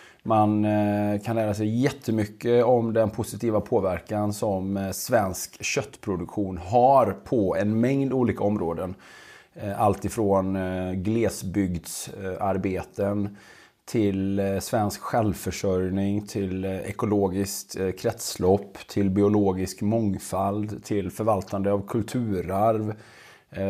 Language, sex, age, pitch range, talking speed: Swedish, male, 30-49, 95-115 Hz, 85 wpm